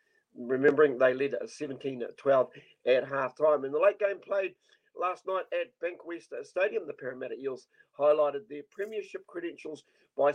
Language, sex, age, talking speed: English, male, 50-69, 140 wpm